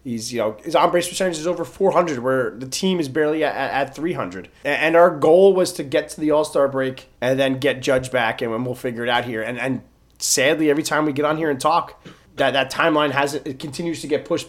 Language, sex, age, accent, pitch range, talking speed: English, male, 30-49, American, 120-150 Hz, 245 wpm